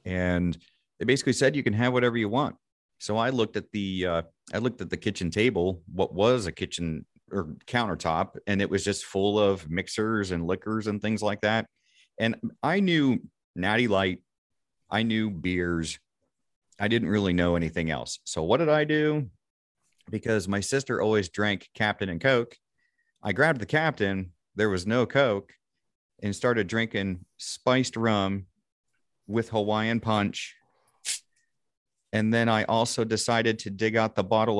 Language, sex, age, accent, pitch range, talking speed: English, male, 30-49, American, 95-115 Hz, 165 wpm